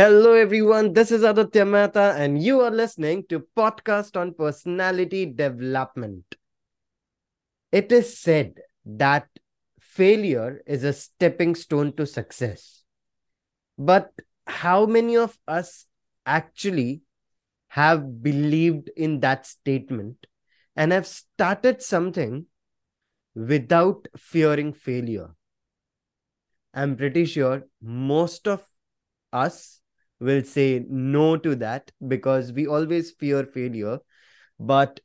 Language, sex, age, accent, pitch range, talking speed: English, male, 20-39, Indian, 135-185 Hz, 105 wpm